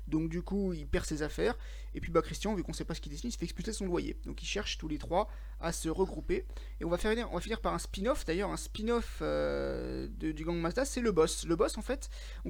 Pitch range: 155-220 Hz